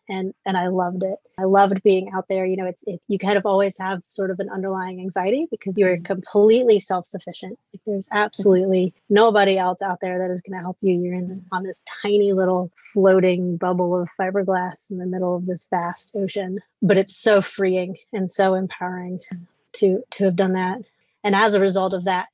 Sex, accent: female, American